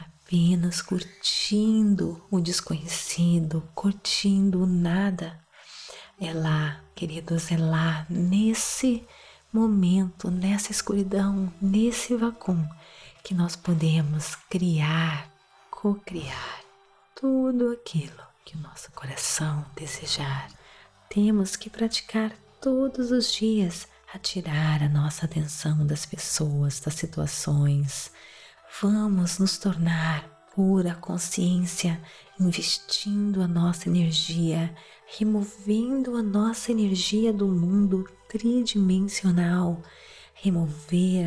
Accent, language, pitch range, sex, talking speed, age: Brazilian, Portuguese, 160-200 Hz, female, 90 wpm, 40-59